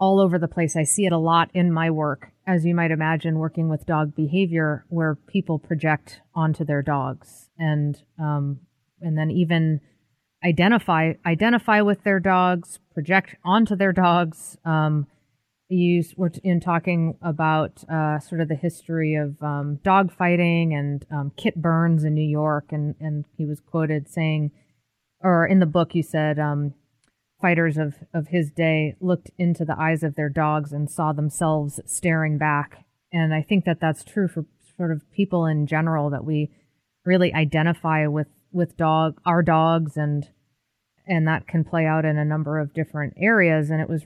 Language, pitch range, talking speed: English, 150-170 Hz, 175 wpm